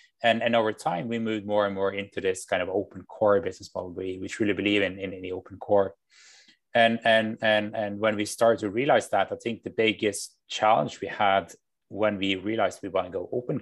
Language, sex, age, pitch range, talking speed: English, male, 20-39, 100-120 Hz, 230 wpm